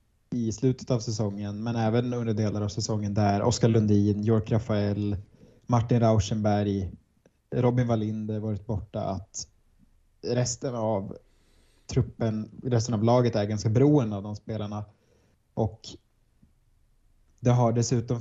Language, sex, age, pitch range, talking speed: Swedish, male, 20-39, 105-120 Hz, 125 wpm